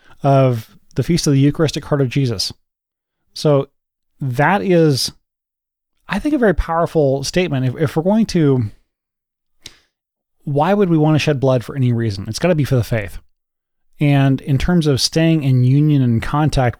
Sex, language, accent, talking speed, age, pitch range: male, English, American, 175 wpm, 30-49, 120-145 Hz